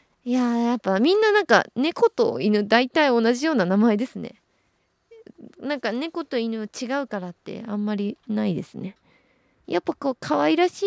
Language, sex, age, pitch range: Japanese, female, 20-39, 210-310 Hz